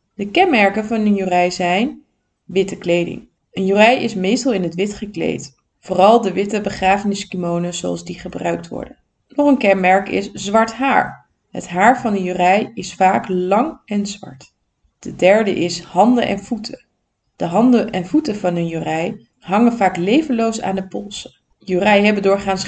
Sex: female